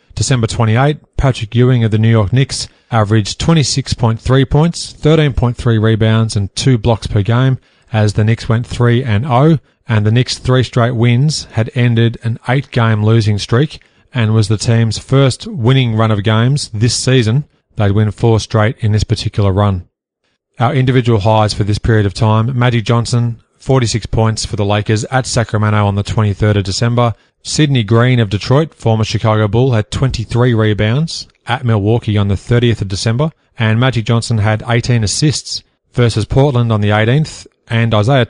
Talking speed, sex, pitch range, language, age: 170 wpm, male, 110-125 Hz, English, 30-49